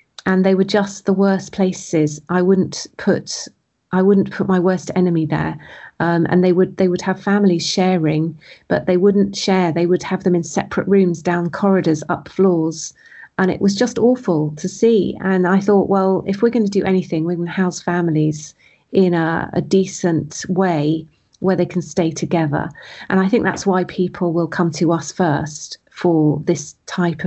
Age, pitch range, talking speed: 40-59, 165-200 Hz, 190 wpm